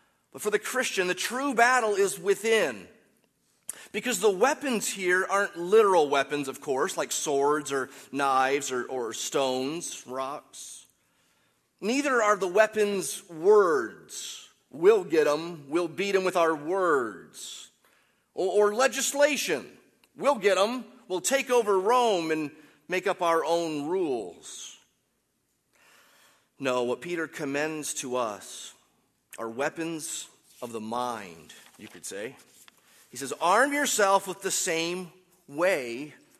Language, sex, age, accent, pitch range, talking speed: English, male, 30-49, American, 145-225 Hz, 130 wpm